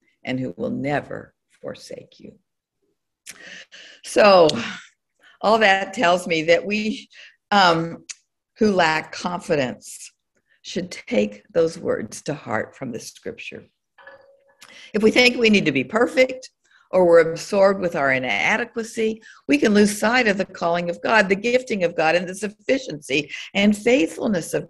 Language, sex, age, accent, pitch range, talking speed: English, female, 50-69, American, 165-235 Hz, 145 wpm